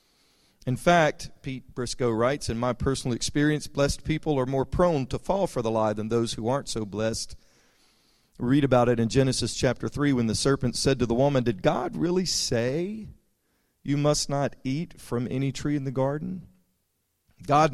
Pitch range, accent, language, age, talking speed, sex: 110-135 Hz, American, English, 40-59, 185 wpm, male